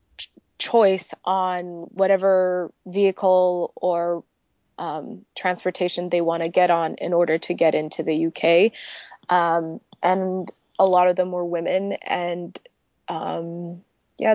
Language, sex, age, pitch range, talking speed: English, female, 20-39, 180-210 Hz, 125 wpm